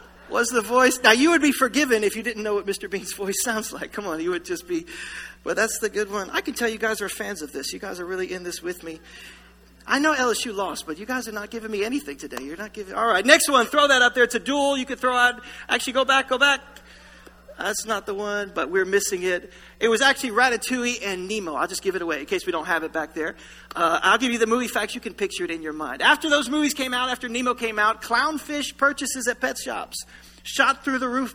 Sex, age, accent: male, 40-59, American